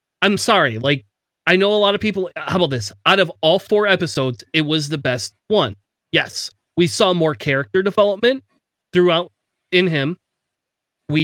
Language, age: English, 30-49